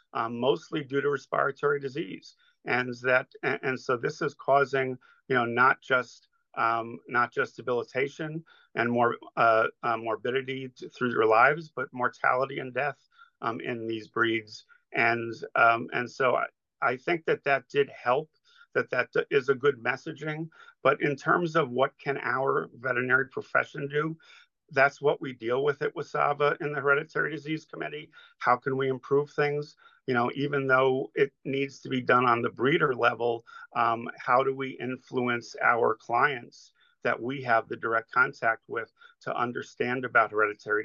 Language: English